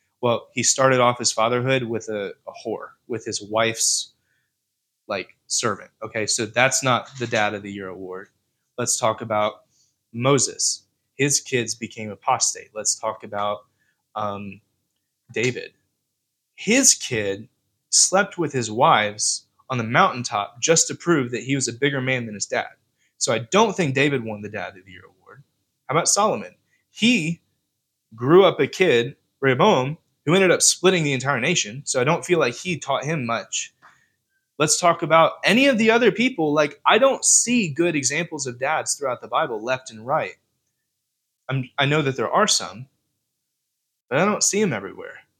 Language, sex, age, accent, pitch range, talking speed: English, male, 20-39, American, 115-160 Hz, 170 wpm